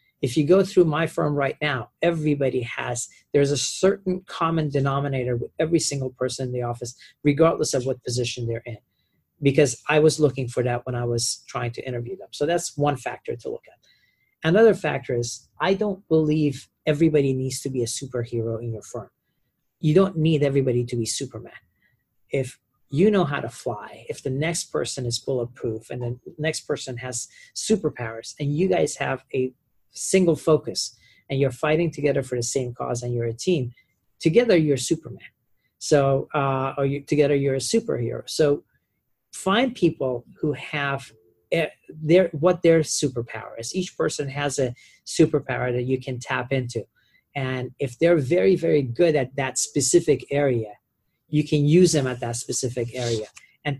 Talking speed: 175 wpm